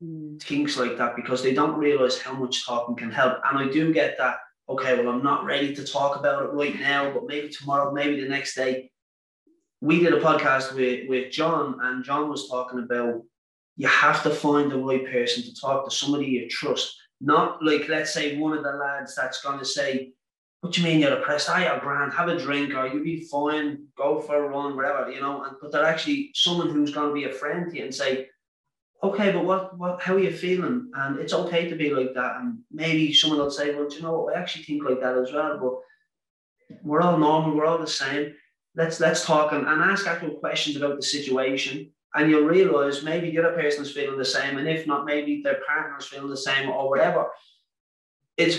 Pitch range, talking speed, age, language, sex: 135-165 Hz, 225 wpm, 20-39, English, male